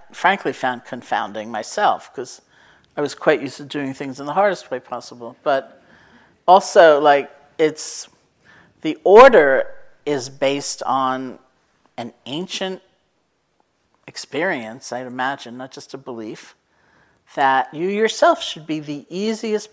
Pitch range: 135-170 Hz